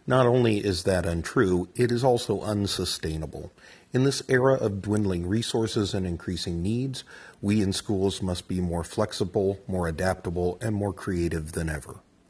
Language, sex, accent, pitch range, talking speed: English, male, American, 85-110 Hz, 155 wpm